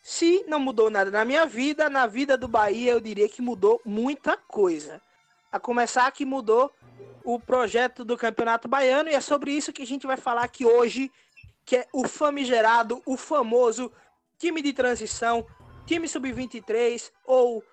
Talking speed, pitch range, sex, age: 165 wpm, 225-280 Hz, male, 20-39